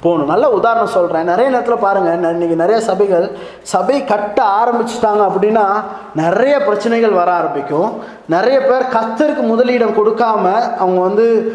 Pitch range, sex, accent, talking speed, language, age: 195-250 Hz, male, native, 135 wpm, Tamil, 20-39